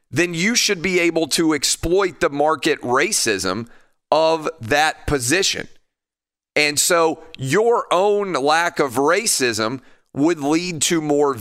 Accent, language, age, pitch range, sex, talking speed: American, English, 40-59, 125-160 Hz, male, 125 wpm